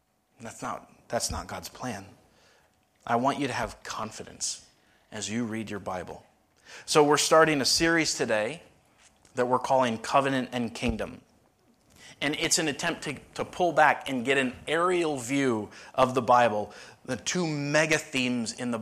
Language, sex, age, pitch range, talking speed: English, male, 30-49, 120-140 Hz, 165 wpm